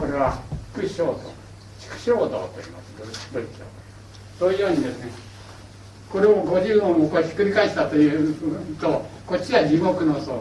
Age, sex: 60-79, male